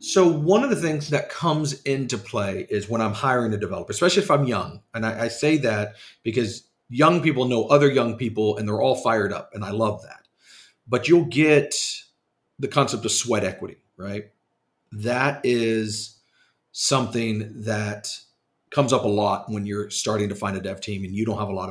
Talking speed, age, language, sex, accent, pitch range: 195 wpm, 40-59, English, male, American, 105-135 Hz